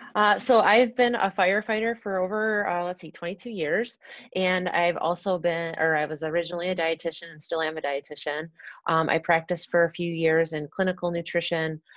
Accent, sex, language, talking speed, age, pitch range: American, female, English, 190 wpm, 30-49, 155-175 Hz